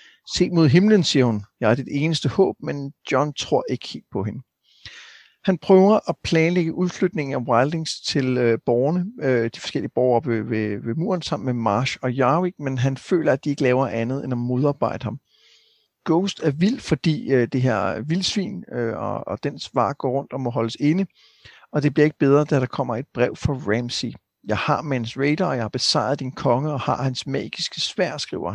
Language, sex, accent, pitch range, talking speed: Danish, male, native, 130-165 Hz, 205 wpm